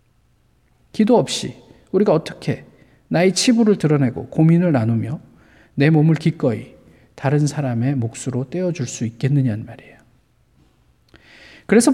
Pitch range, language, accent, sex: 150-220 Hz, Korean, native, male